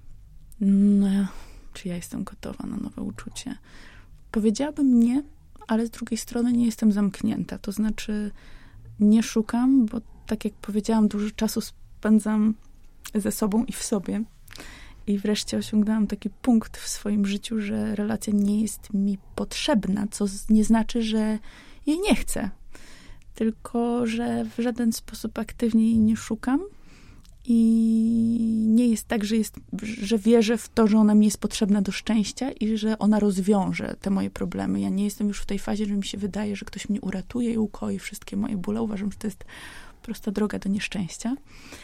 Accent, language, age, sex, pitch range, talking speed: native, Polish, 20-39, female, 205-230 Hz, 165 wpm